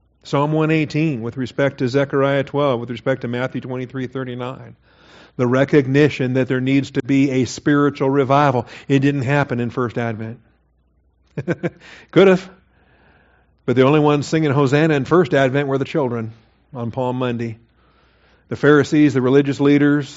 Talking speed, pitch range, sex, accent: 160 wpm, 115-145 Hz, male, American